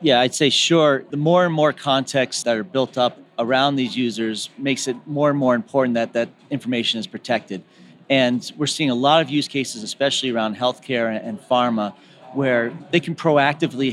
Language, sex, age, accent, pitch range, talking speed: English, male, 40-59, American, 120-145 Hz, 190 wpm